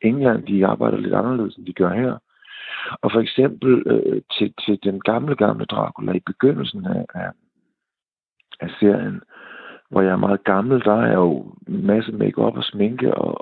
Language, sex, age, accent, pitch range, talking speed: Danish, male, 50-69, native, 100-115 Hz, 180 wpm